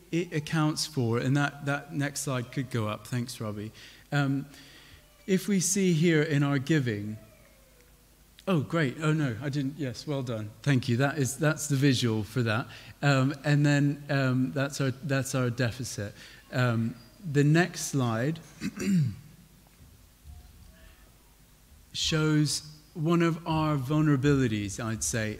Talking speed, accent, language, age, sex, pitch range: 140 wpm, British, English, 40-59, male, 120-145 Hz